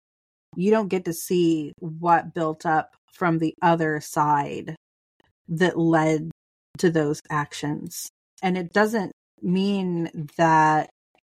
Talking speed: 115 wpm